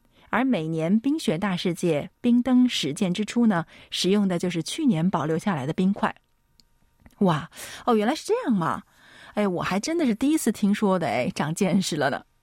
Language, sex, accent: Chinese, female, native